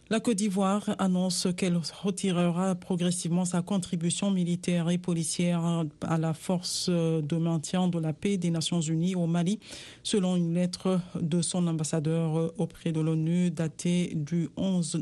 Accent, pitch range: French, 165-185 Hz